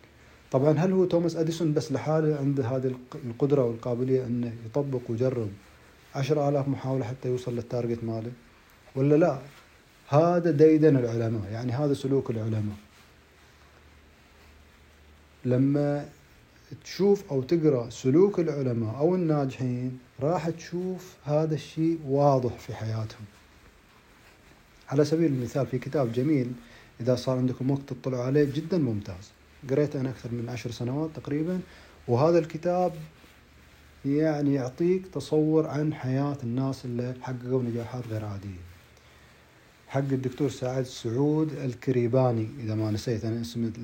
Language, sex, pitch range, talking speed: Arabic, male, 120-150 Hz, 120 wpm